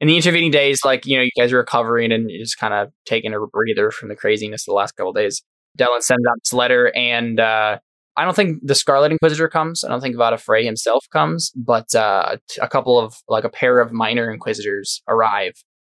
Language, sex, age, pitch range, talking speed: English, male, 10-29, 115-145 Hz, 230 wpm